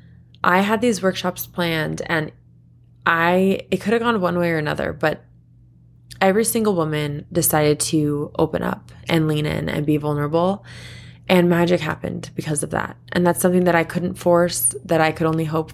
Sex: female